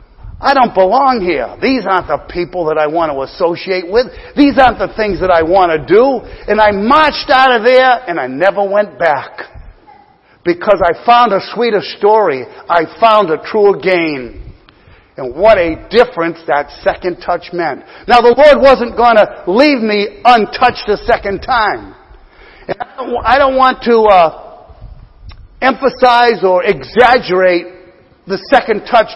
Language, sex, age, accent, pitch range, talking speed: English, male, 50-69, American, 175-240 Hz, 155 wpm